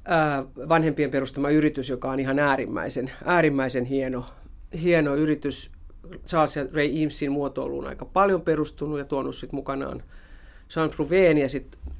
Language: Finnish